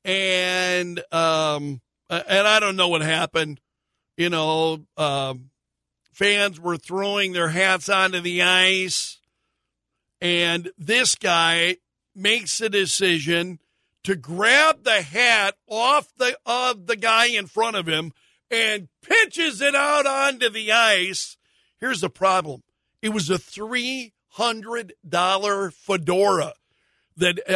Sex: male